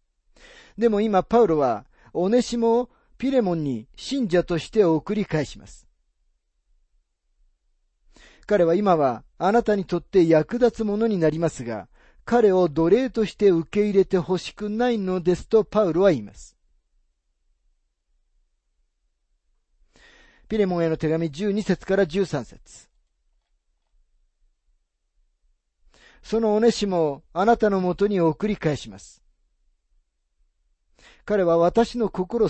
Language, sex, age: Japanese, male, 40-59